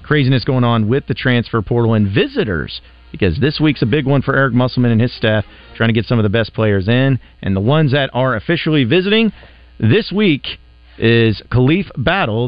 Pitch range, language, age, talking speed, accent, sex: 105-135 Hz, English, 40-59, 200 wpm, American, male